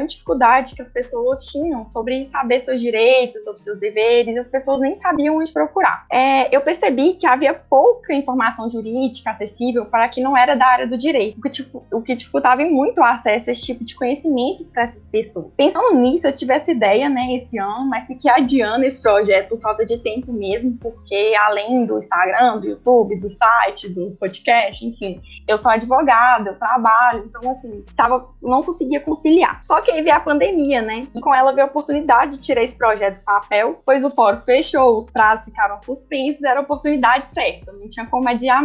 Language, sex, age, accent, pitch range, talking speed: Portuguese, female, 10-29, Brazilian, 230-275 Hz, 200 wpm